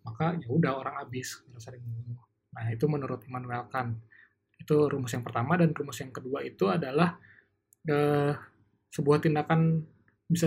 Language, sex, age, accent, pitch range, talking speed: Indonesian, male, 20-39, native, 115-150 Hz, 130 wpm